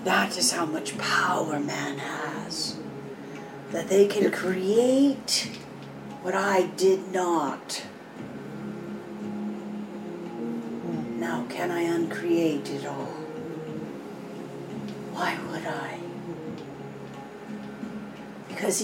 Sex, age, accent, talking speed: female, 50-69, American, 80 wpm